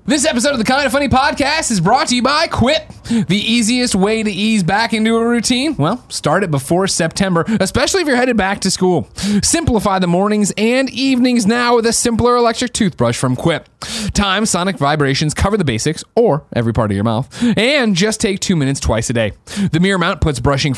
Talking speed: 210 wpm